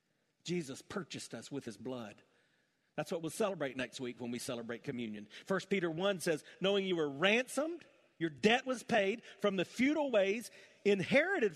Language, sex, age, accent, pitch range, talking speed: English, male, 40-59, American, 135-200 Hz, 170 wpm